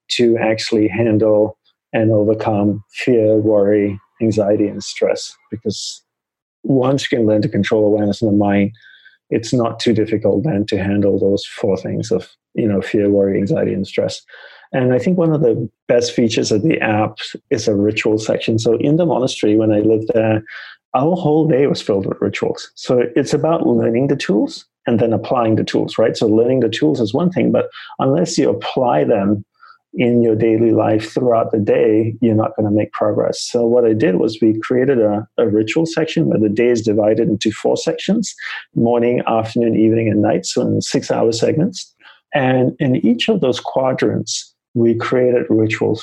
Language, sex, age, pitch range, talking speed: English, male, 30-49, 110-130 Hz, 190 wpm